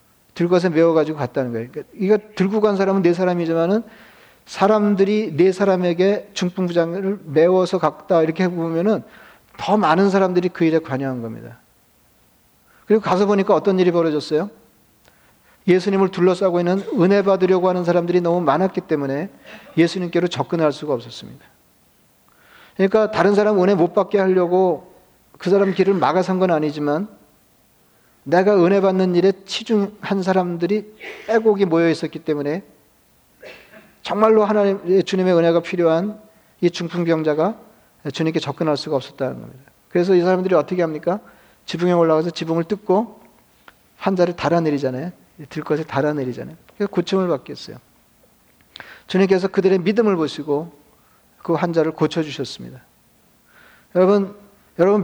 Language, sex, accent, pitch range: Korean, male, native, 160-195 Hz